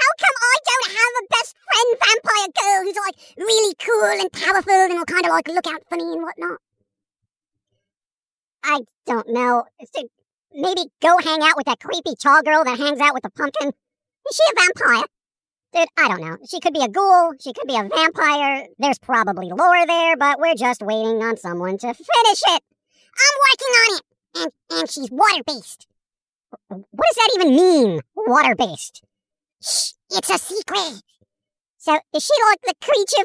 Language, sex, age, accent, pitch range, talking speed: English, male, 50-69, American, 280-380 Hz, 180 wpm